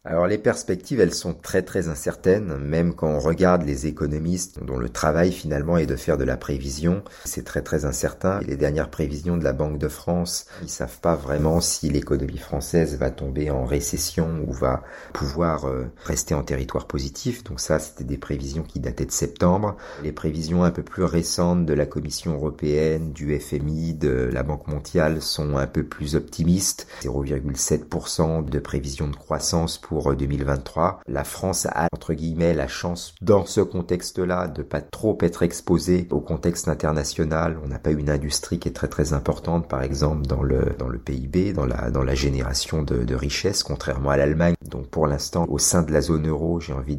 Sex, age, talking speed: male, 50-69, 195 wpm